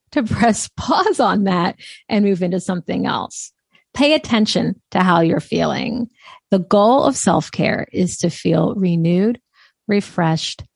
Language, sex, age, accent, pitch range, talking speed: English, female, 40-59, American, 180-235 Hz, 140 wpm